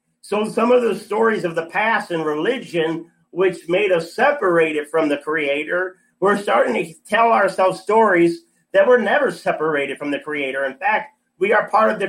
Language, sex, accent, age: English, male, American, 40-59